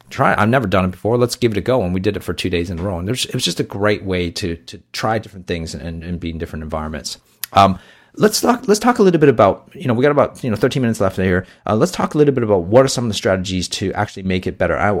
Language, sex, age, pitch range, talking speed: English, male, 30-49, 90-125 Hz, 320 wpm